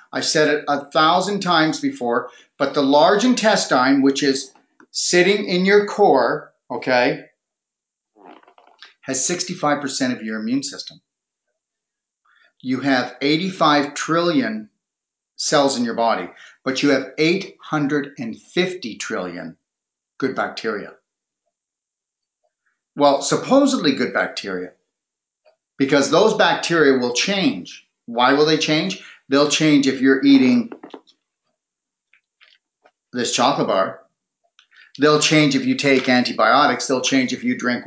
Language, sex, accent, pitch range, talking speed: English, male, American, 135-190 Hz, 115 wpm